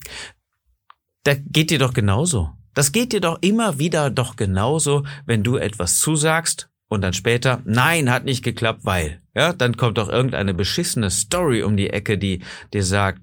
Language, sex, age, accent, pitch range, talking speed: German, male, 40-59, German, 100-140 Hz, 170 wpm